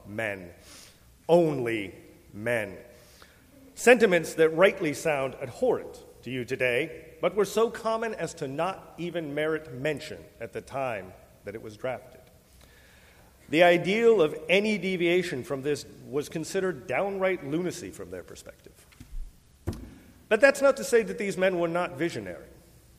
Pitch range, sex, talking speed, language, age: 120-175 Hz, male, 140 wpm, English, 40-59